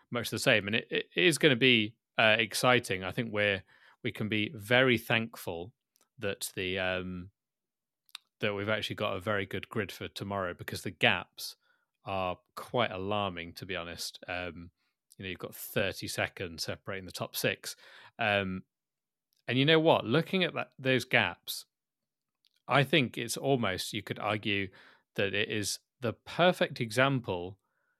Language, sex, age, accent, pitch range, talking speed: English, male, 30-49, British, 105-135 Hz, 165 wpm